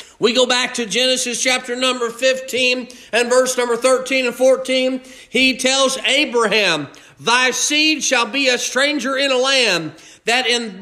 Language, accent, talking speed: English, American, 150 wpm